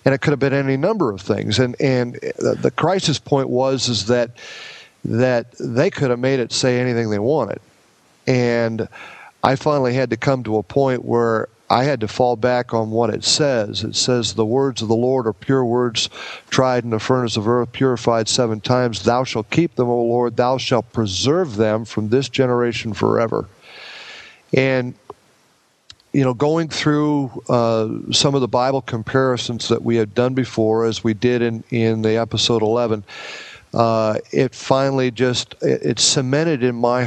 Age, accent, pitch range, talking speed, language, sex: 50-69, American, 115-130 Hz, 185 wpm, English, male